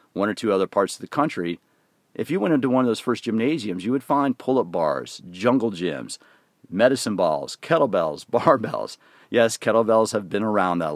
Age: 40-59